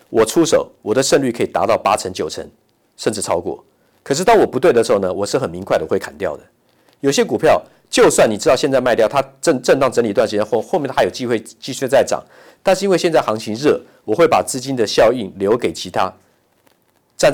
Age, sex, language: 50-69, male, Chinese